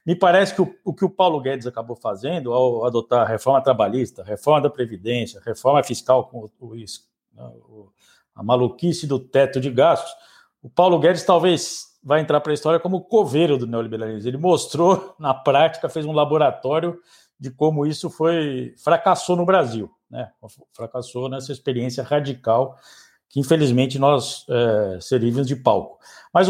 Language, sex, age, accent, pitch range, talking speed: Portuguese, male, 60-79, Brazilian, 120-165 Hz, 170 wpm